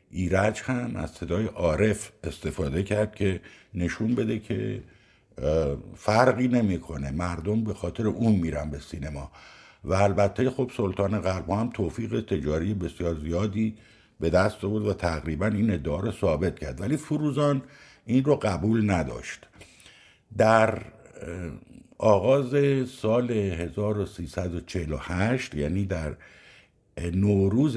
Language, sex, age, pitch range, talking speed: Persian, male, 60-79, 85-110 Hz, 110 wpm